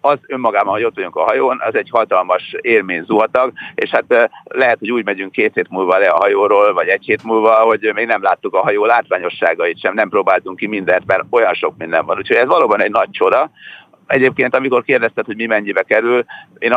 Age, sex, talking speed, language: 50-69, male, 210 wpm, Hungarian